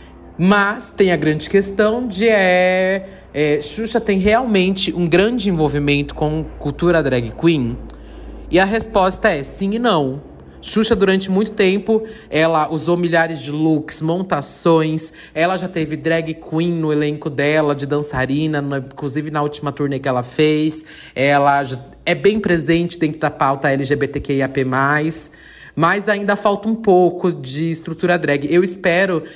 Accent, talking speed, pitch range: Brazilian, 140 wpm, 145-180 Hz